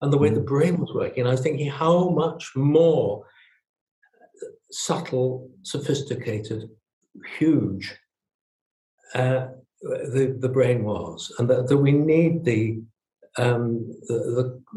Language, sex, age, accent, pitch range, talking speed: English, male, 60-79, British, 125-160 Hz, 120 wpm